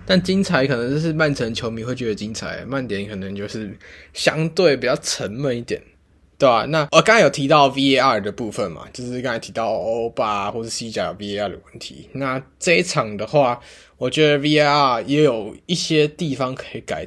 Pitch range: 105-145 Hz